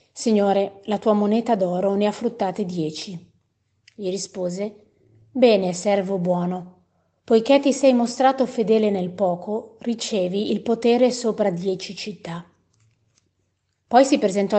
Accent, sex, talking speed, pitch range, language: native, female, 125 wpm, 185-225 Hz, Italian